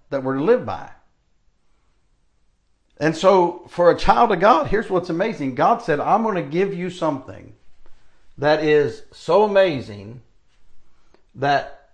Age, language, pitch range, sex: 60-79, English, 125-175 Hz, male